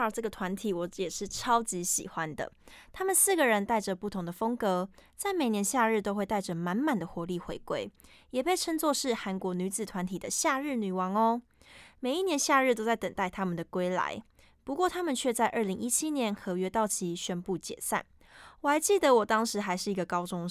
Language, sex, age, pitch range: Chinese, female, 20-39, 185-255 Hz